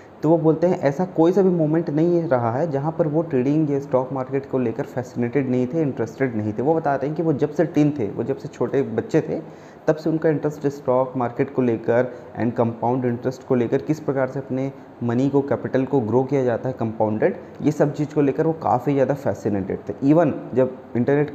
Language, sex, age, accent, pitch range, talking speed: Hindi, male, 20-39, native, 120-150 Hz, 230 wpm